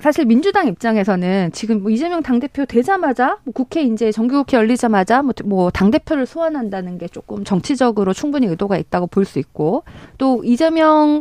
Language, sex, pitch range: Korean, female, 200-275 Hz